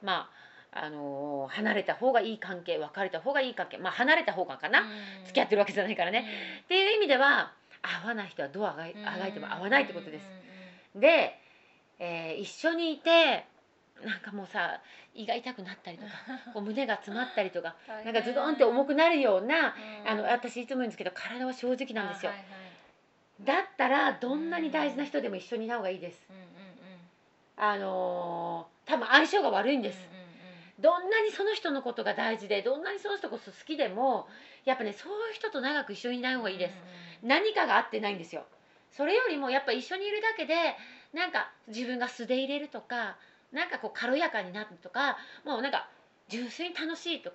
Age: 30-49